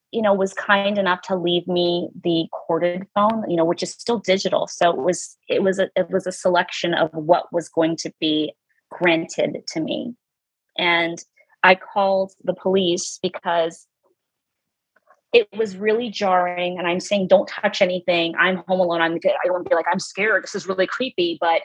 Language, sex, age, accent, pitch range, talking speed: English, female, 30-49, American, 170-205 Hz, 190 wpm